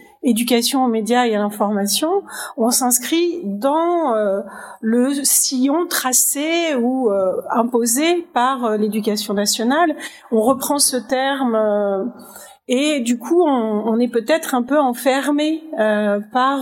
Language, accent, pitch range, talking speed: French, French, 210-270 Hz, 135 wpm